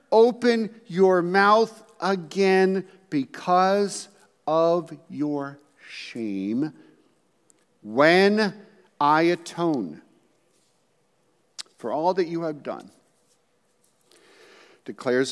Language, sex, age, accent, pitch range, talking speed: English, male, 50-69, American, 110-180 Hz, 70 wpm